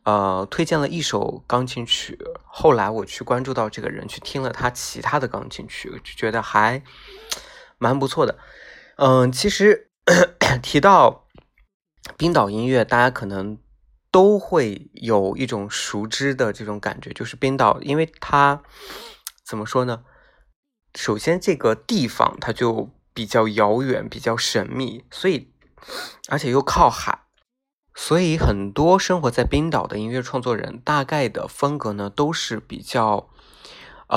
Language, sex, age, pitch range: Chinese, male, 20-39, 110-165 Hz